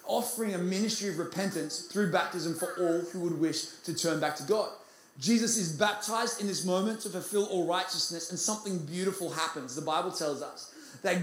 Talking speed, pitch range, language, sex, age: 190 wpm, 175-255 Hz, English, male, 20-39